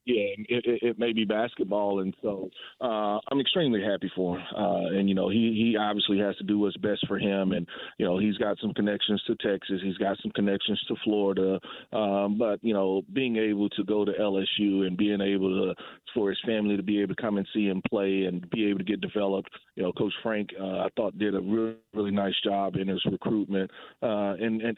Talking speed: 230 wpm